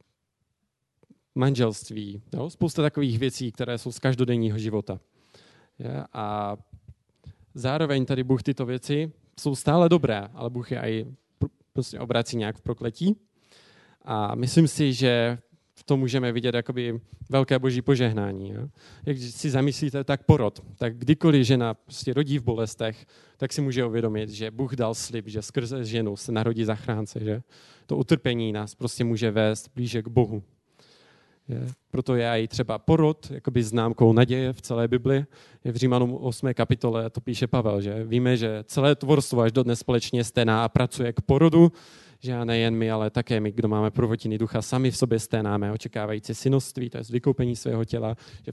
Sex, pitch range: male, 110-135 Hz